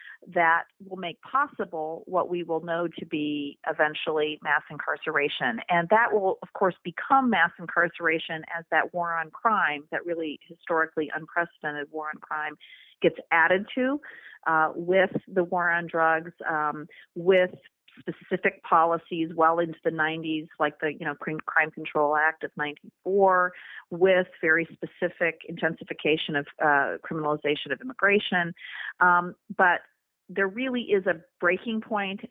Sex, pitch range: female, 155-185 Hz